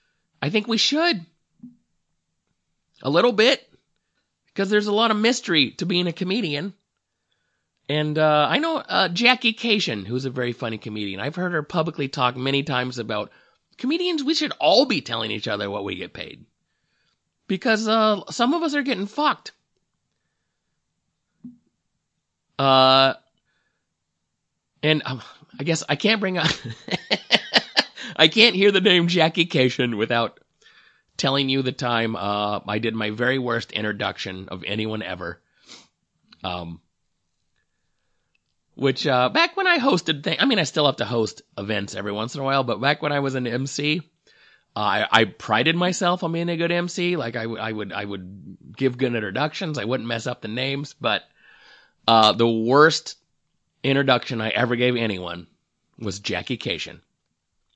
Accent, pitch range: American, 115-180 Hz